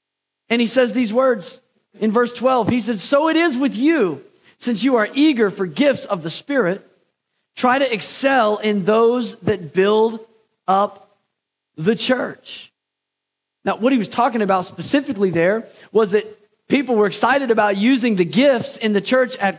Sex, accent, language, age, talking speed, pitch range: male, American, English, 40-59, 170 wpm, 205-255 Hz